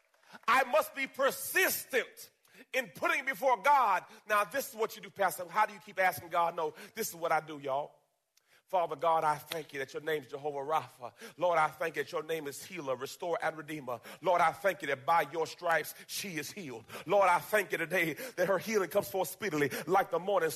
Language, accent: English, American